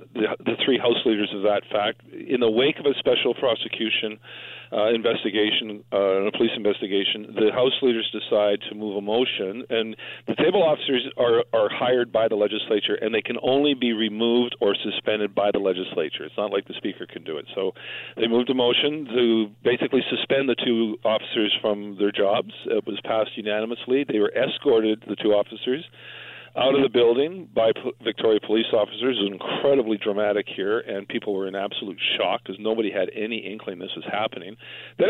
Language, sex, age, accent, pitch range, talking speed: English, male, 40-59, American, 105-130 Hz, 190 wpm